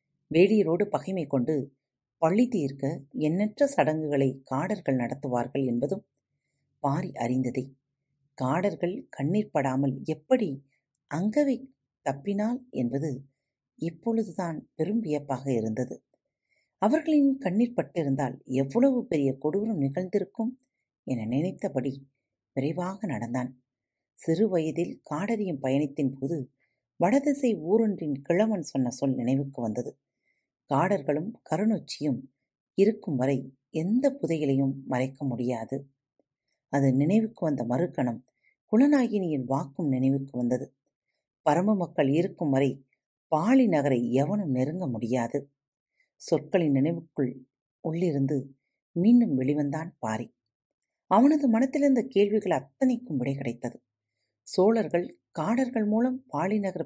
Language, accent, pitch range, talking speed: Tamil, native, 135-200 Hz, 90 wpm